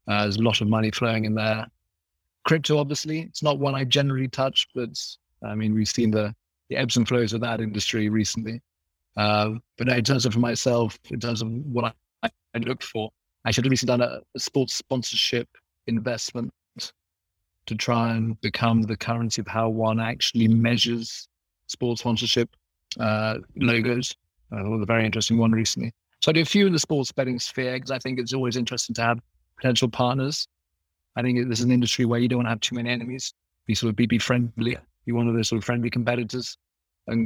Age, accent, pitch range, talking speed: 30-49, British, 110-125 Hz, 205 wpm